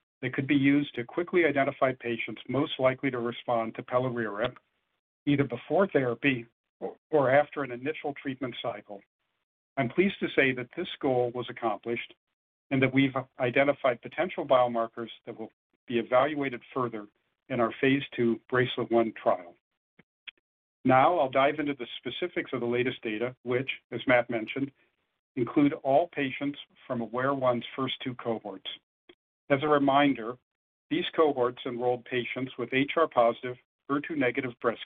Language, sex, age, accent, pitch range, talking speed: English, male, 50-69, American, 120-140 Hz, 145 wpm